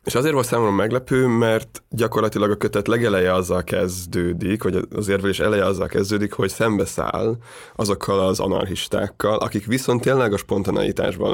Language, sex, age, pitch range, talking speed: Hungarian, male, 20-39, 95-110 Hz, 150 wpm